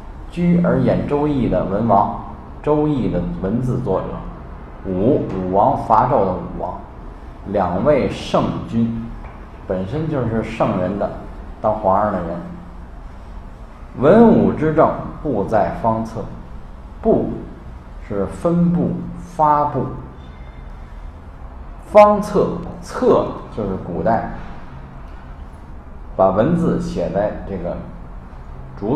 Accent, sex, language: native, male, Chinese